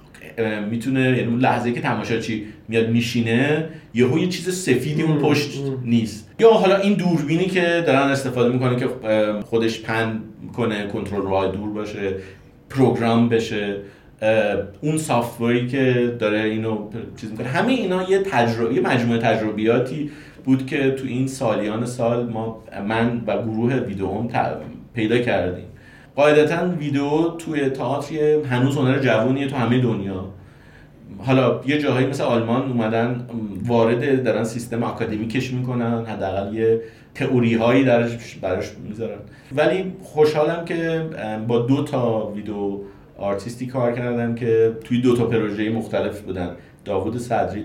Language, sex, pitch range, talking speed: Persian, male, 110-140 Hz, 130 wpm